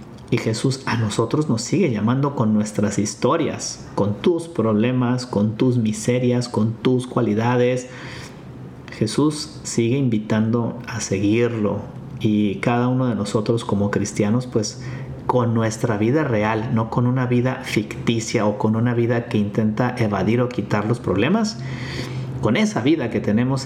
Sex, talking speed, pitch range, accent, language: male, 145 wpm, 110-125 Hz, Mexican, Spanish